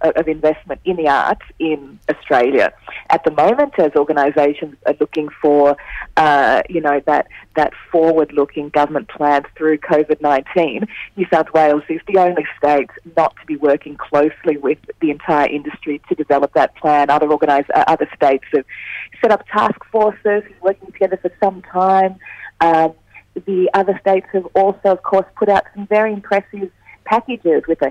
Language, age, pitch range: English, 40-59, 150-195 Hz